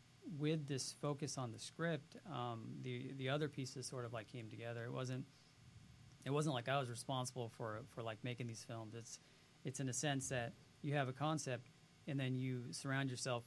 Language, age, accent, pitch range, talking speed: English, 40-59, American, 125-145 Hz, 200 wpm